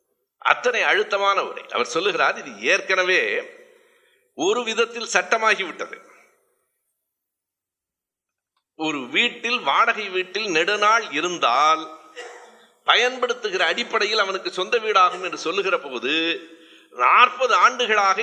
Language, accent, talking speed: Tamil, native, 80 wpm